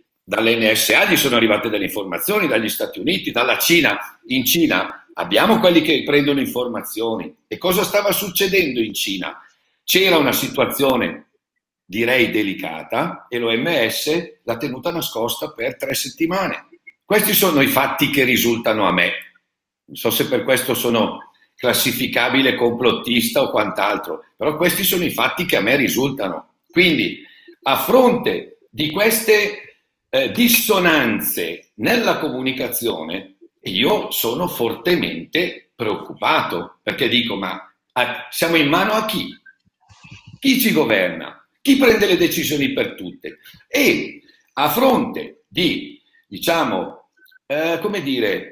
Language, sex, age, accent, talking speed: Italian, male, 50-69, native, 125 wpm